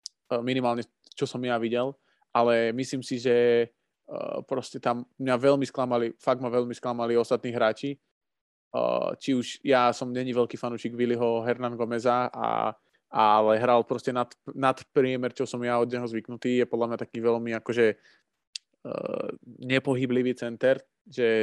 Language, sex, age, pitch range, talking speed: Slovak, male, 20-39, 115-130 Hz, 155 wpm